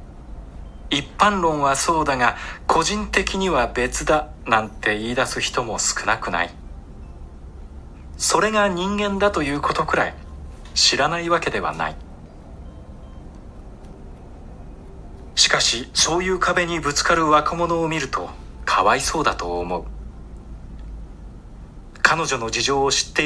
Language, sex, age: Japanese, male, 40-59